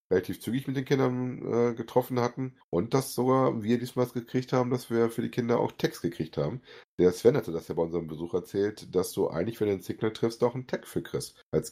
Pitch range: 90-125 Hz